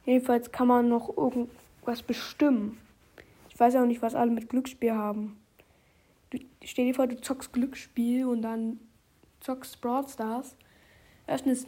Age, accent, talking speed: 20-39, German, 155 wpm